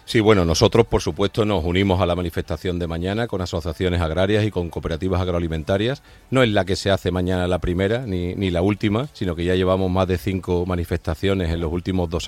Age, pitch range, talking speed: 40-59, 90-110 Hz, 215 wpm